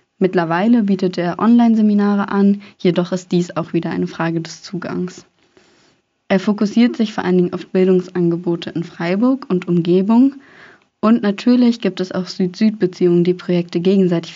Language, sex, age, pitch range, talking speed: German, female, 20-39, 175-205 Hz, 145 wpm